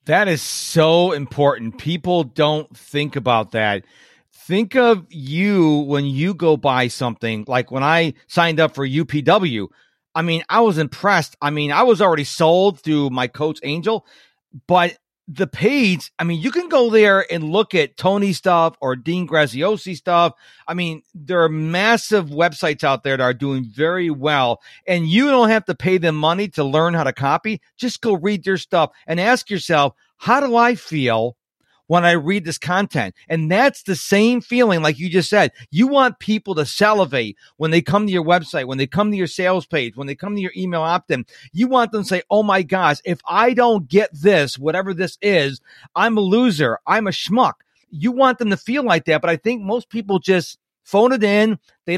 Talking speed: 200 wpm